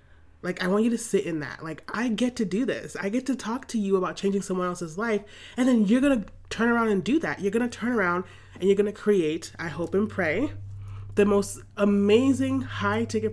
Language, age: English, 30-49